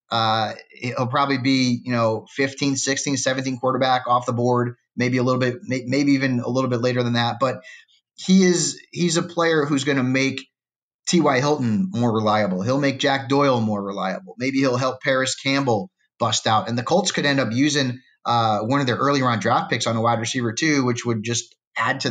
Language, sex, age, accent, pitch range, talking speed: English, male, 30-49, American, 120-145 Hz, 210 wpm